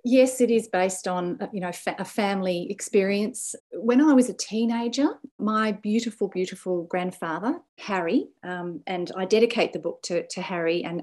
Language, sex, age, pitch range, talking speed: English, female, 40-59, 180-235 Hz, 165 wpm